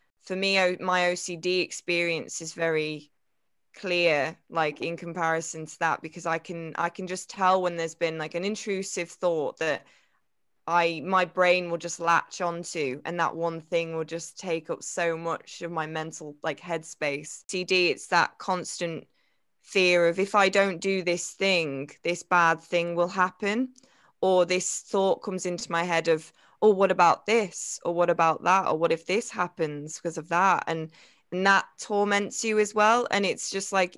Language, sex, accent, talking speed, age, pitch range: English, female, British, 180 wpm, 20-39, 170-190 Hz